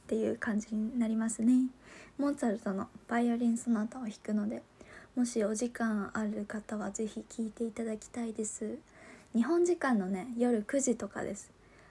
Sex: female